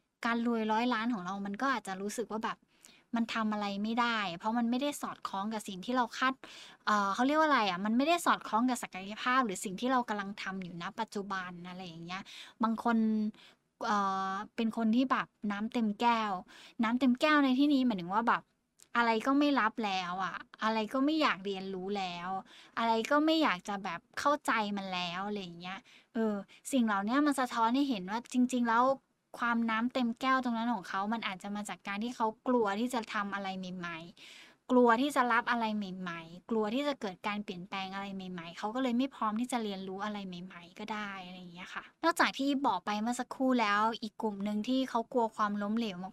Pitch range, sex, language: 200-250 Hz, female, Thai